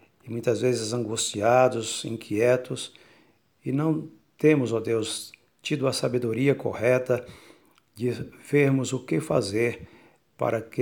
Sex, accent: male, Brazilian